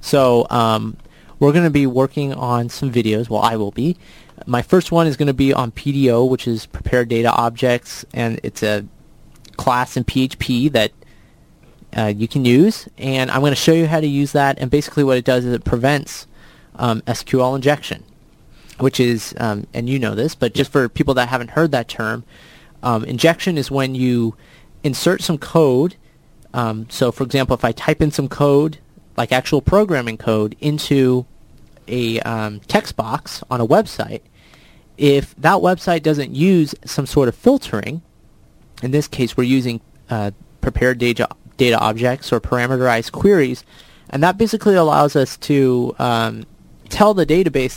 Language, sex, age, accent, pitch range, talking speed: English, male, 30-49, American, 120-145 Hz, 170 wpm